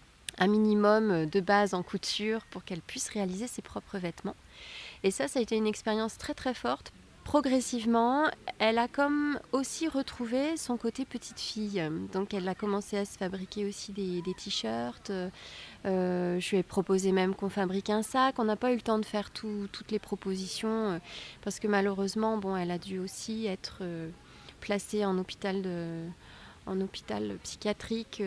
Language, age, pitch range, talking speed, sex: French, 30-49, 190-235 Hz, 175 wpm, female